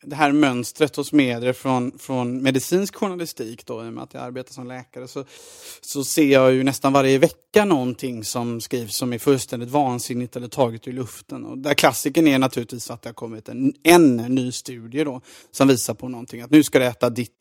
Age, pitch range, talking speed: 30-49, 125-155 Hz, 210 wpm